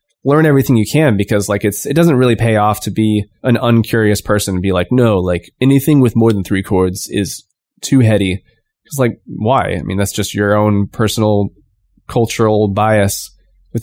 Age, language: 20-39, English